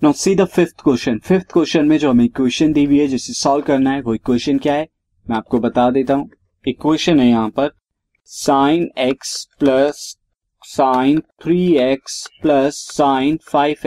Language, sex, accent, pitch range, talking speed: Hindi, male, native, 125-160 Hz, 115 wpm